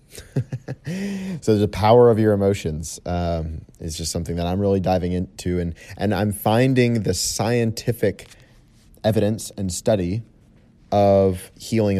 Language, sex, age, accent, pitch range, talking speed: English, male, 30-49, American, 85-110 Hz, 130 wpm